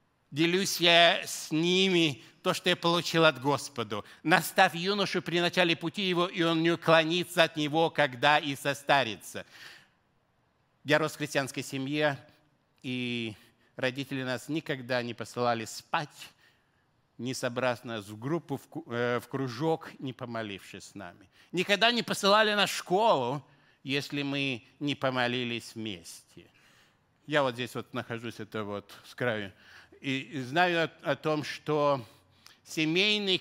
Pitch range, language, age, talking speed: 120-170 Hz, Russian, 60-79, 135 wpm